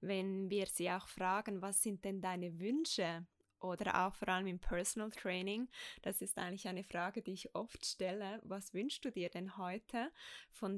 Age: 20-39